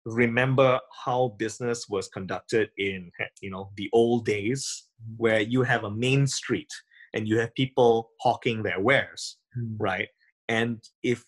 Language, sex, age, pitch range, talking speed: English, male, 20-39, 110-140 Hz, 145 wpm